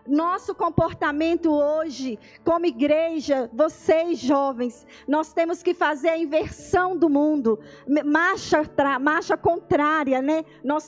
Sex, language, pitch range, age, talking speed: female, Portuguese, 320-380 Hz, 20-39, 110 wpm